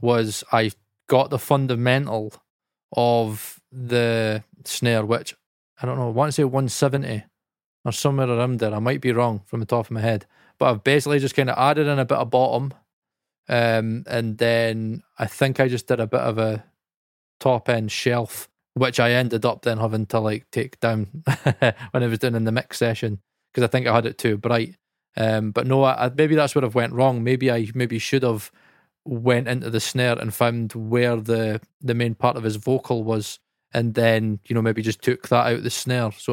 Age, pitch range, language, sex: 20-39, 115-130 Hz, English, male